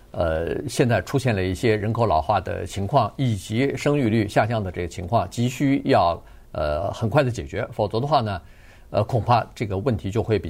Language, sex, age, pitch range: Chinese, male, 50-69, 100-135 Hz